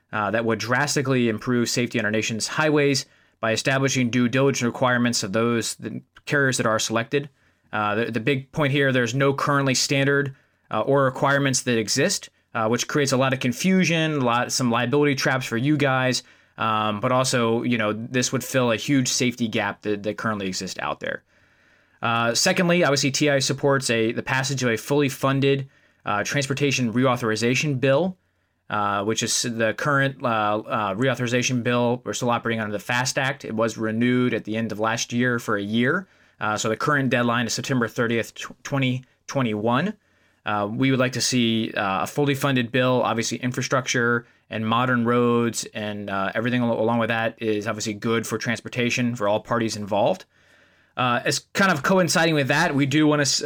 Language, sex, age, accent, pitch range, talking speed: English, male, 20-39, American, 115-140 Hz, 185 wpm